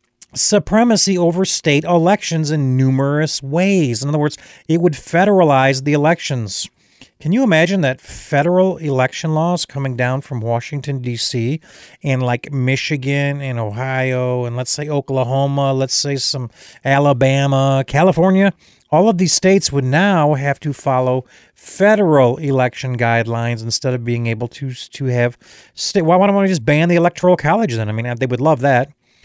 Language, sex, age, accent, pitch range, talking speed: English, male, 40-59, American, 130-170 Hz, 155 wpm